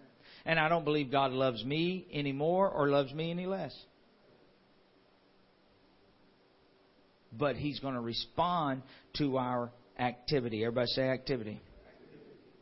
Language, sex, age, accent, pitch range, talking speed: English, male, 50-69, American, 125-180 Hz, 115 wpm